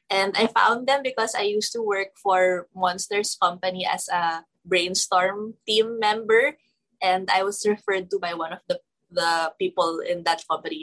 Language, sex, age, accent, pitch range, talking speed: English, female, 20-39, Filipino, 180-255 Hz, 170 wpm